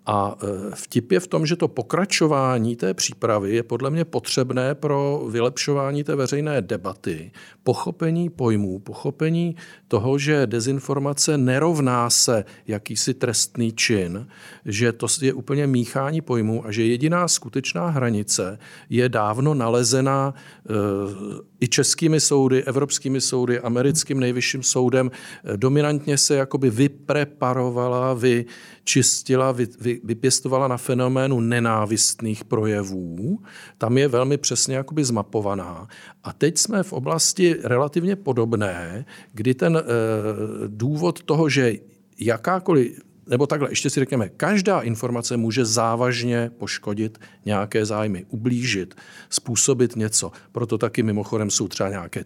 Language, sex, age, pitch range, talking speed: Czech, male, 50-69, 115-145 Hz, 120 wpm